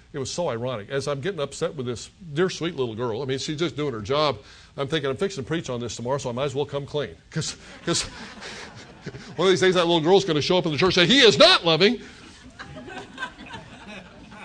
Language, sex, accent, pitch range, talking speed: English, male, American, 135-180 Hz, 240 wpm